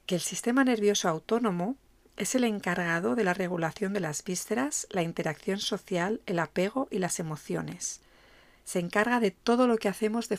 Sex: female